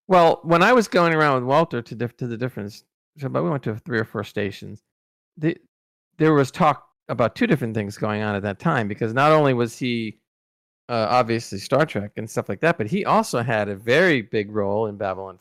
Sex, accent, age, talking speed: male, American, 40-59, 210 wpm